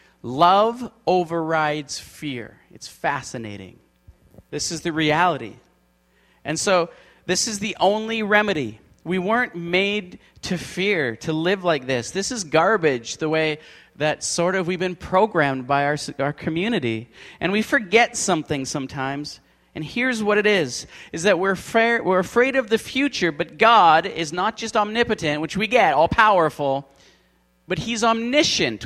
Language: English